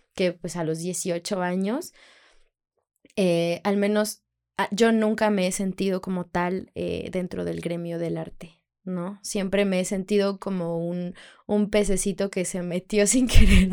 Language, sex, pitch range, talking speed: Spanish, female, 180-215 Hz, 160 wpm